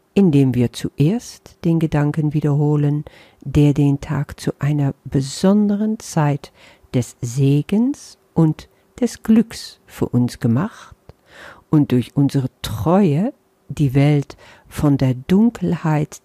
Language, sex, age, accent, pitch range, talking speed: German, female, 50-69, German, 140-185 Hz, 110 wpm